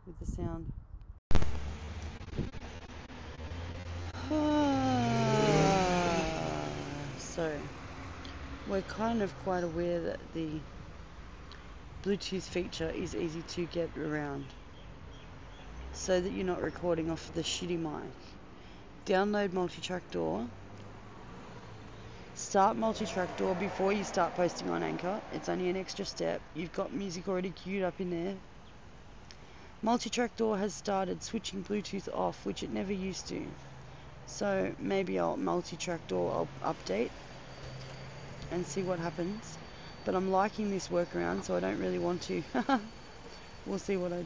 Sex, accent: female, Australian